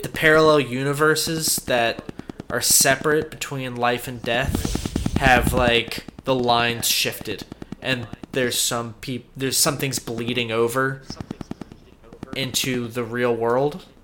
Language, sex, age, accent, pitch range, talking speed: English, male, 20-39, American, 115-145 Hz, 115 wpm